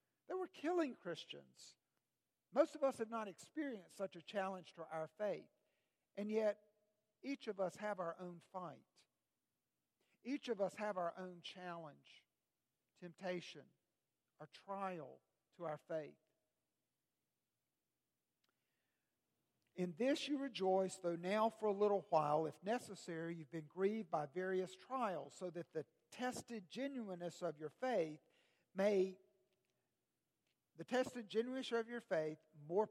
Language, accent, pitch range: English, American, 170-225 Hz